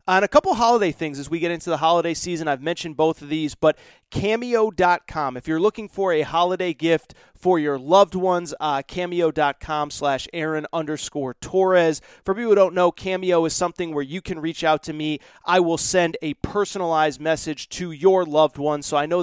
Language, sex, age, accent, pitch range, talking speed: English, male, 30-49, American, 155-185 Hz, 195 wpm